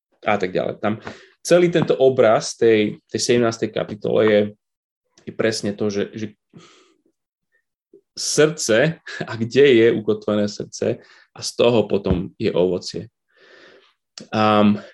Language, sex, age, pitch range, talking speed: Slovak, male, 20-39, 105-145 Hz, 120 wpm